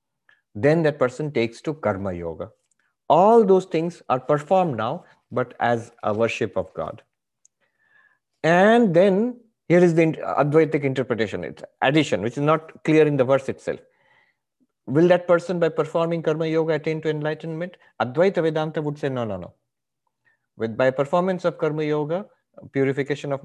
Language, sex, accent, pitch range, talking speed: English, male, Indian, 120-165 Hz, 155 wpm